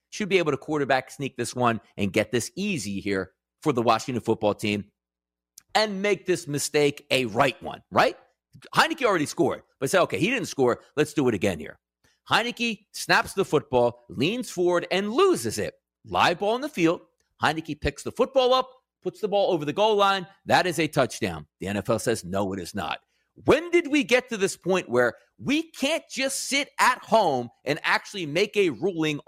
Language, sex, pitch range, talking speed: English, male, 140-220 Hz, 195 wpm